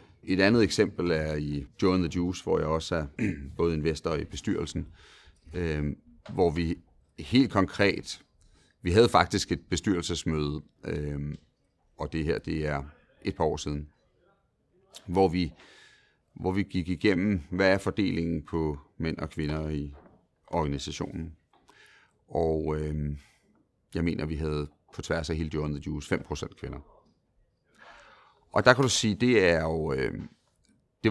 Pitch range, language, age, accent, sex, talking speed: 75-90 Hz, Danish, 40-59, native, male, 145 wpm